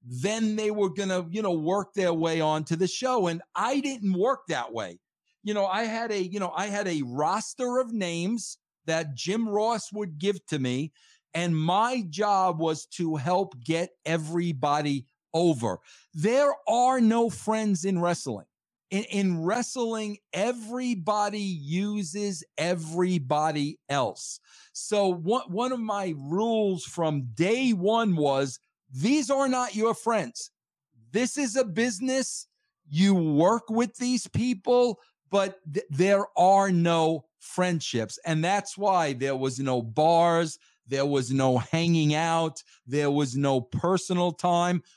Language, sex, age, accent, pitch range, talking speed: English, male, 50-69, American, 155-210 Hz, 145 wpm